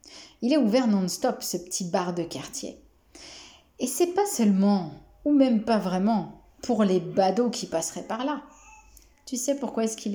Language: French